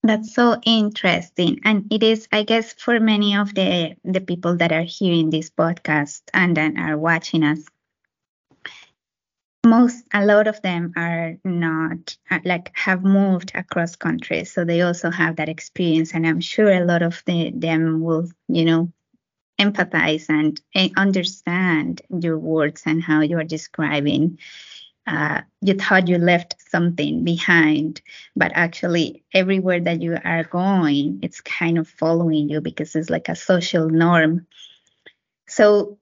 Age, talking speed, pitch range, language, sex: 20-39, 150 wpm, 165-195 Hz, English, female